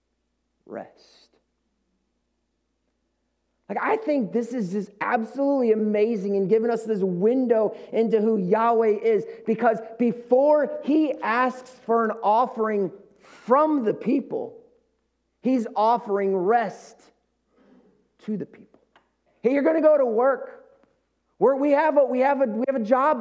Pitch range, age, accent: 210-260 Hz, 30-49, American